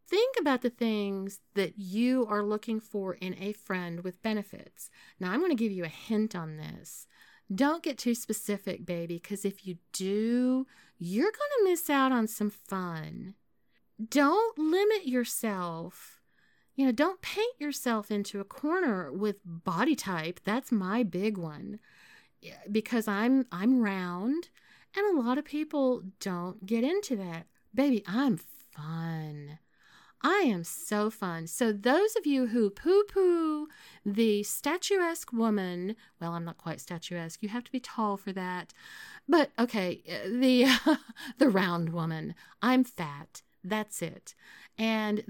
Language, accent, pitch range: English, American, 185-260 Hz